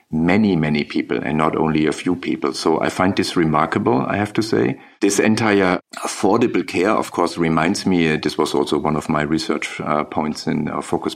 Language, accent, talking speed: English, German, 205 wpm